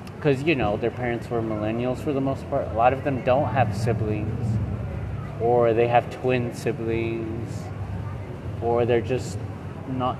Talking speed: 160 wpm